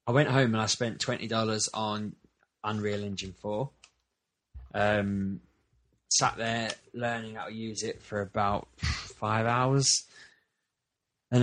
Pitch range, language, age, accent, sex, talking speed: 95-120 Hz, English, 20-39, British, male, 125 wpm